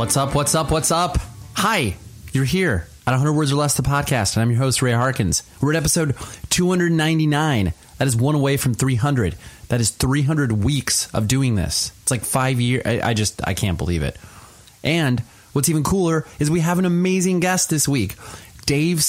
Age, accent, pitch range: 30-49, American, 100-135 Hz